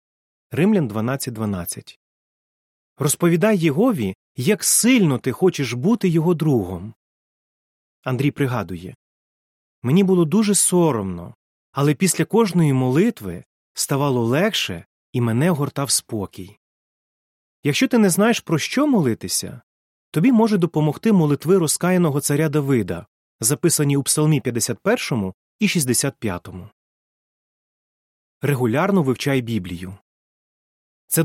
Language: Ukrainian